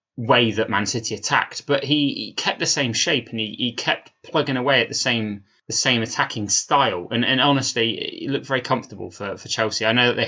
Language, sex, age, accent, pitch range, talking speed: English, male, 20-39, British, 110-145 Hz, 230 wpm